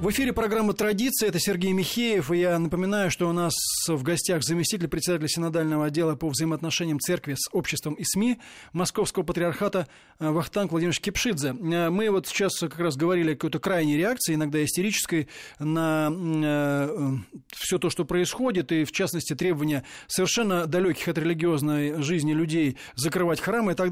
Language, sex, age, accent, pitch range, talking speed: Russian, male, 20-39, native, 160-200 Hz, 155 wpm